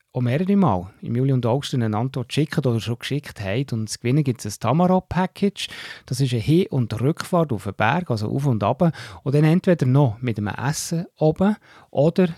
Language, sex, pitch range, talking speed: German, male, 110-155 Hz, 205 wpm